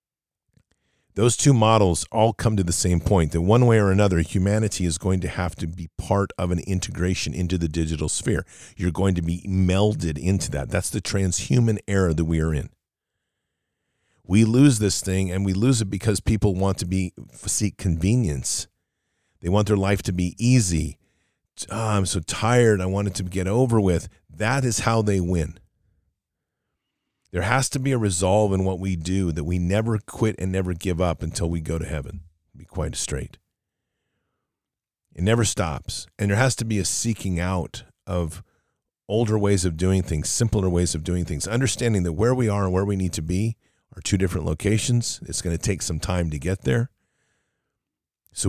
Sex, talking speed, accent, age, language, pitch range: male, 190 wpm, American, 40-59, English, 85-105 Hz